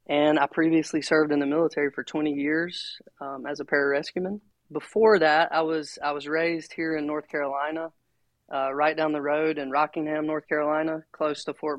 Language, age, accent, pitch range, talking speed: English, 20-39, American, 145-160 Hz, 190 wpm